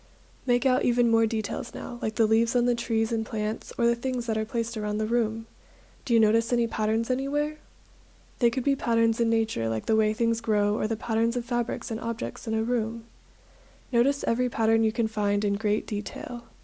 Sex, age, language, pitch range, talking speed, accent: female, 20-39, English, 220-245 Hz, 215 wpm, American